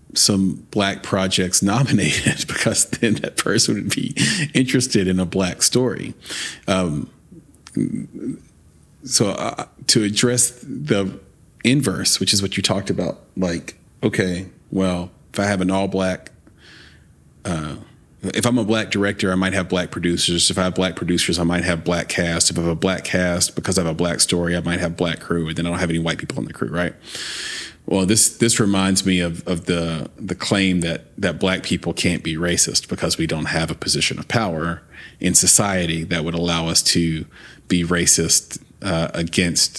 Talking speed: 185 wpm